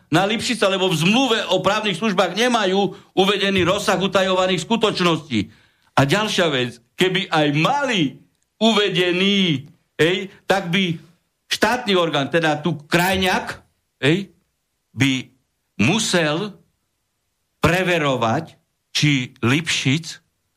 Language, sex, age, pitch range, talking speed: Slovak, male, 60-79, 150-210 Hz, 100 wpm